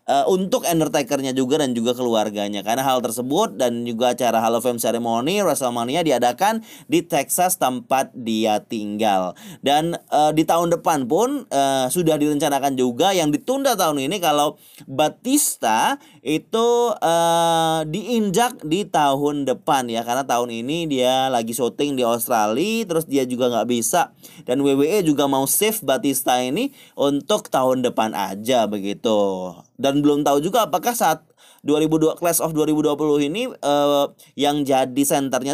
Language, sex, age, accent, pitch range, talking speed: Indonesian, male, 20-39, native, 125-165 Hz, 145 wpm